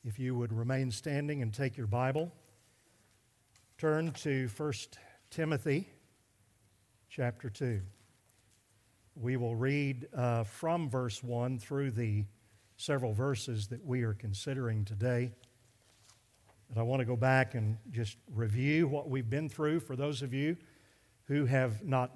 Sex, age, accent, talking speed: male, 50-69, American, 140 wpm